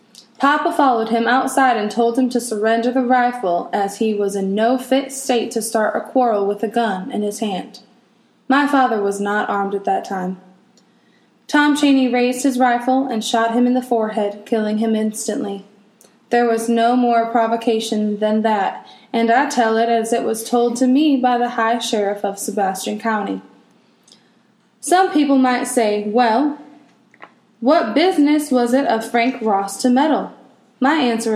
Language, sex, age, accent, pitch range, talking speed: English, female, 10-29, American, 220-255 Hz, 170 wpm